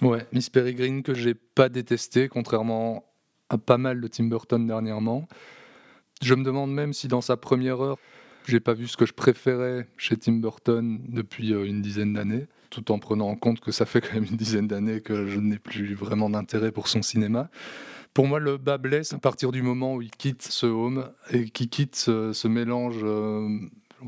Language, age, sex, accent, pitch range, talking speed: French, 20-39, male, French, 105-125 Hz, 200 wpm